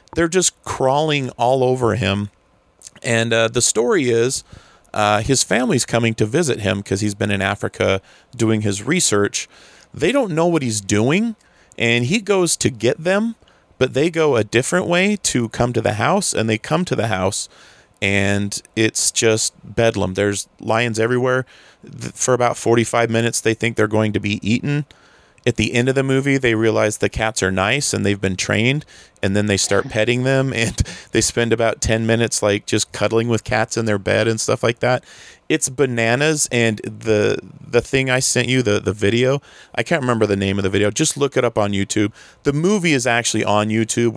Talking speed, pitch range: 195 wpm, 105-130 Hz